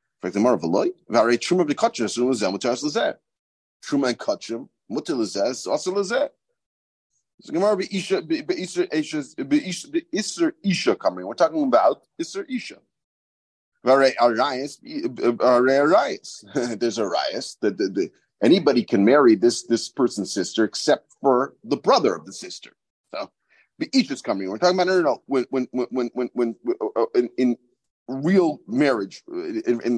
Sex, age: male, 40-59